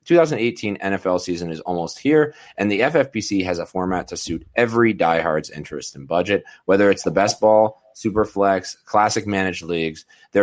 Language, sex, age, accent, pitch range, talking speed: English, male, 30-49, American, 90-110 Hz, 175 wpm